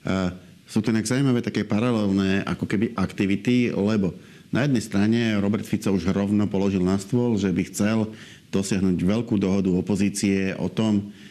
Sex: male